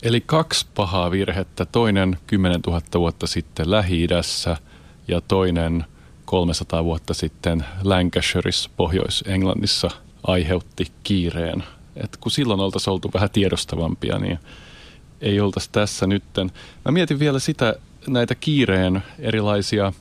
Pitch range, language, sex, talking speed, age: 90-105 Hz, Finnish, male, 115 wpm, 30-49